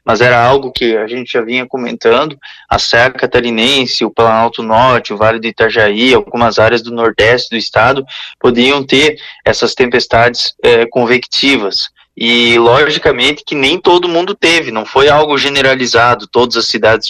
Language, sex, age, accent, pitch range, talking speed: Portuguese, male, 20-39, Brazilian, 120-165 Hz, 160 wpm